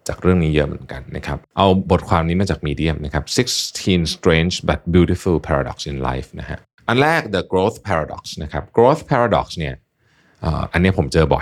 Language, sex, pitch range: Thai, male, 80-110 Hz